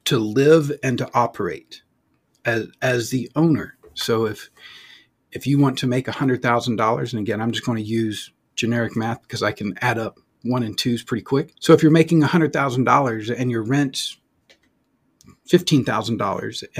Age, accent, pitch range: 40-59, American, 115-140 Hz